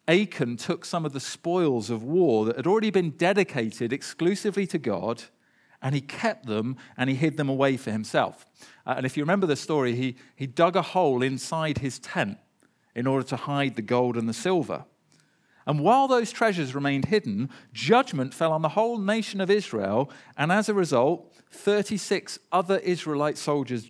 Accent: British